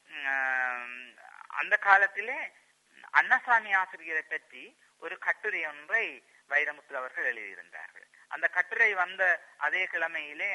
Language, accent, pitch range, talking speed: Tamil, native, 130-175 Hz, 90 wpm